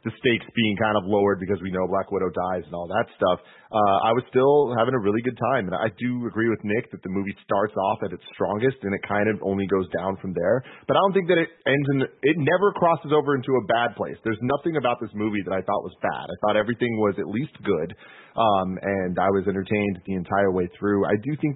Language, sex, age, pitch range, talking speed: English, male, 30-49, 100-130 Hz, 260 wpm